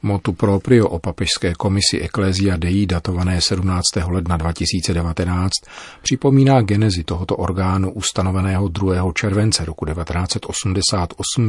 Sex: male